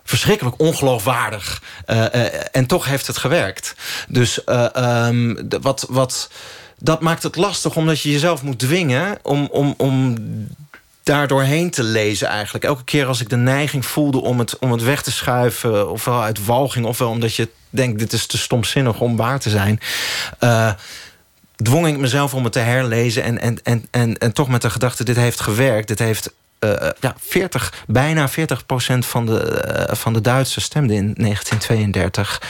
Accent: Dutch